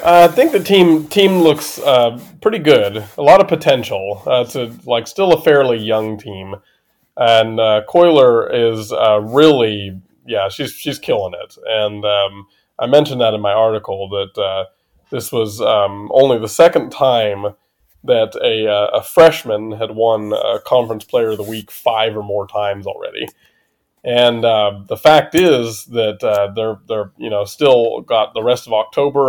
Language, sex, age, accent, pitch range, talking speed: English, male, 20-39, American, 105-125 Hz, 175 wpm